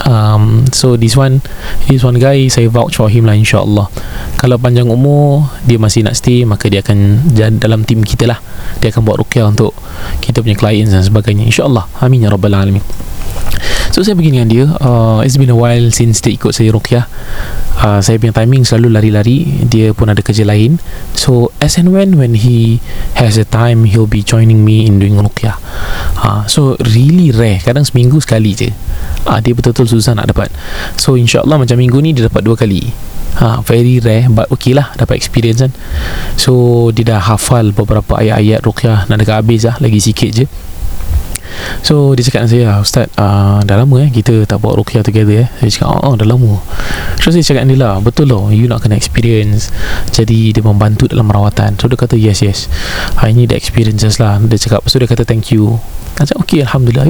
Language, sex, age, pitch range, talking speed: Malay, male, 20-39, 105-125 Hz, 200 wpm